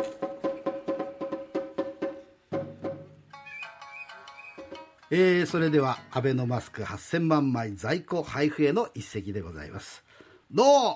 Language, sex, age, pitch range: Japanese, male, 50-69, 140-190 Hz